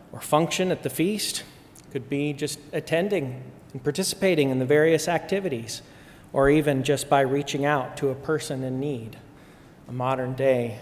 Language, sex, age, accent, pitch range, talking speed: English, male, 40-59, American, 130-155 Hz, 155 wpm